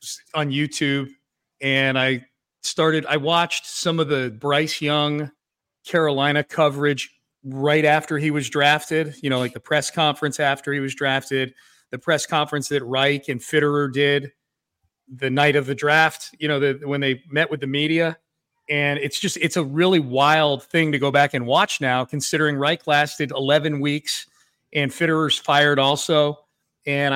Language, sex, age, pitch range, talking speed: English, male, 40-59, 140-160 Hz, 165 wpm